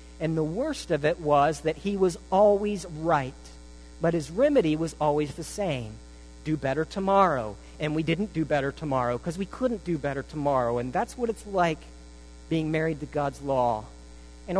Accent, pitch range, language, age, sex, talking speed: American, 140-195 Hz, English, 50-69, male, 180 wpm